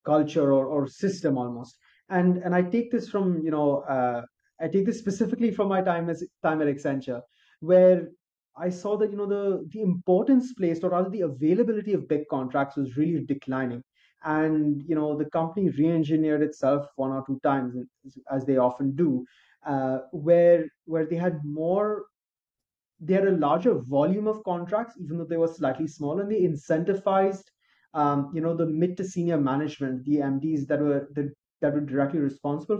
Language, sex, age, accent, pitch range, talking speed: English, male, 30-49, Indian, 140-185 Hz, 185 wpm